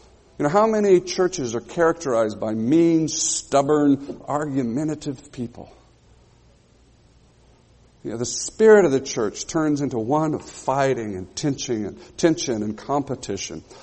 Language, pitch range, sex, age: English, 115-165 Hz, male, 60-79